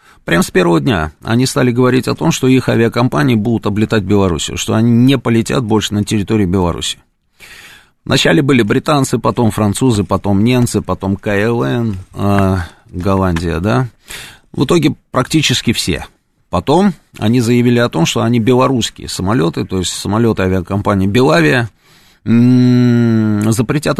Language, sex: Russian, male